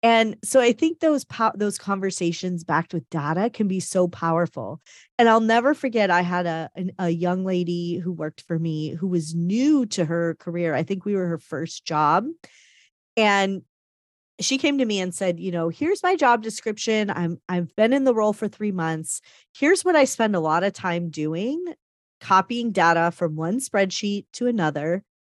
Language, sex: English, female